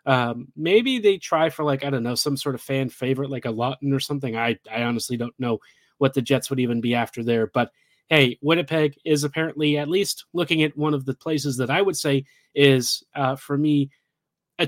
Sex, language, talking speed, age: male, English, 220 wpm, 30-49